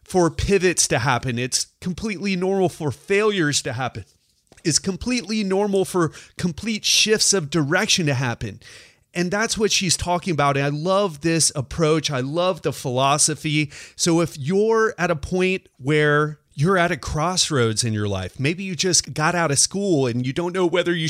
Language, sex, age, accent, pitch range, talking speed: English, male, 30-49, American, 135-180 Hz, 180 wpm